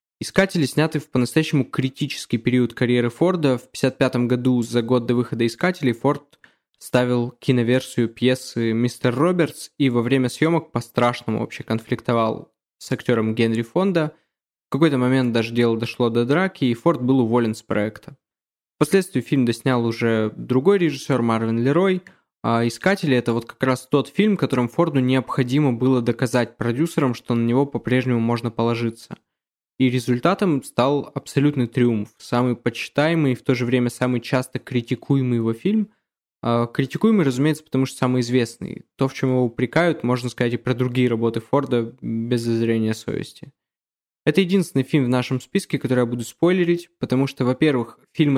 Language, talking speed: Russian, 160 wpm